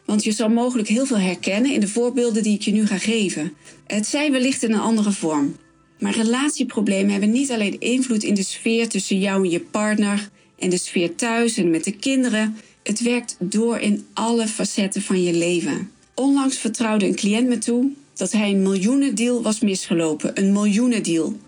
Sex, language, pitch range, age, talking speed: female, Dutch, 180-240 Hz, 40-59, 190 wpm